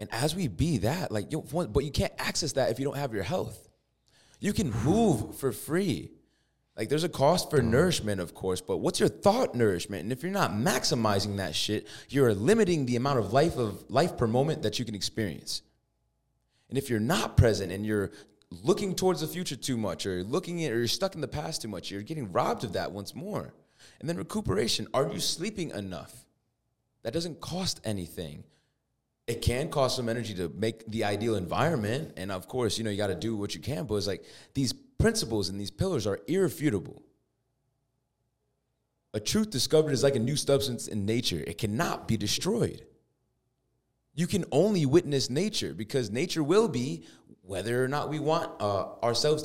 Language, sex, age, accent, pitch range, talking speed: English, male, 20-39, American, 105-145 Hz, 195 wpm